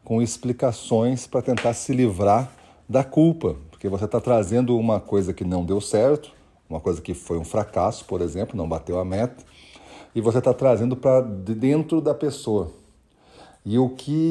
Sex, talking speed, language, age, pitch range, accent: male, 170 wpm, Portuguese, 40-59, 100-130 Hz, Brazilian